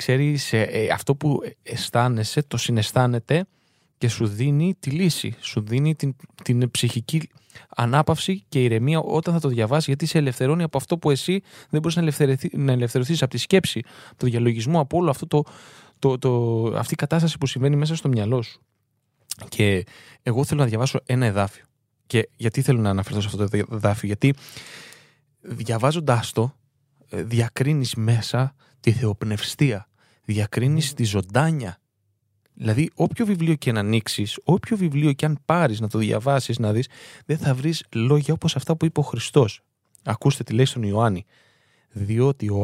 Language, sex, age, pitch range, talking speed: Greek, male, 20-39, 110-150 Hz, 165 wpm